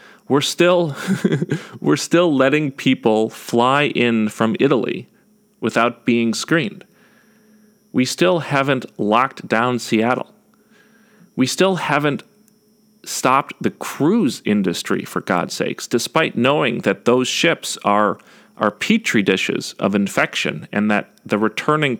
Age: 40-59